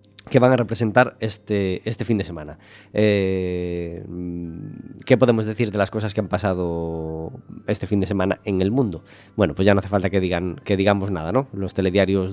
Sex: male